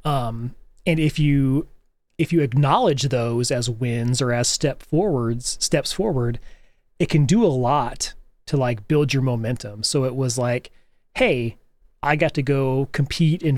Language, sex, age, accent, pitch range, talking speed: English, male, 30-49, American, 125-150 Hz, 165 wpm